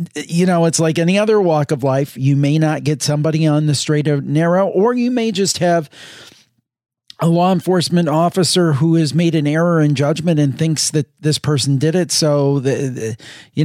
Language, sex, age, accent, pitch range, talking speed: English, male, 40-59, American, 145-180 Hz, 200 wpm